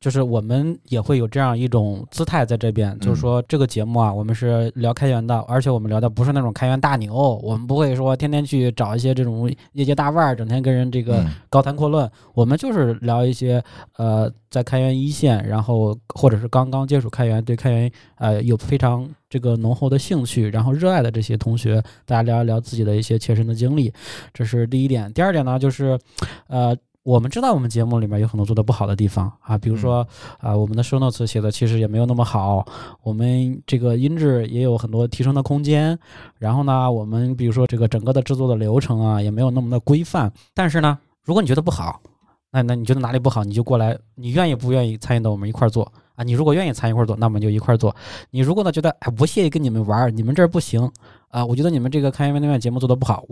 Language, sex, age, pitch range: Chinese, male, 20-39, 115-135 Hz